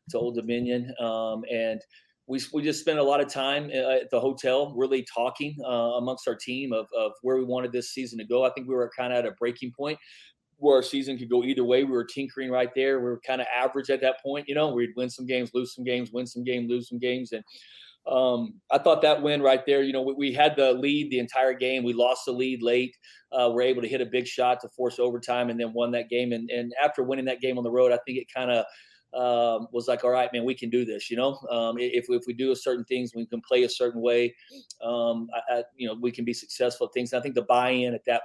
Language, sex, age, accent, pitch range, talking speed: English, male, 30-49, American, 120-130 Hz, 270 wpm